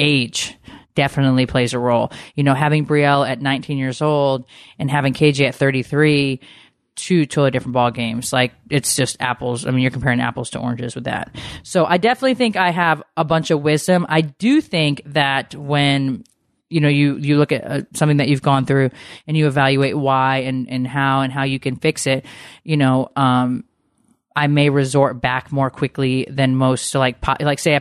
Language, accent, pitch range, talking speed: English, American, 130-160 Hz, 200 wpm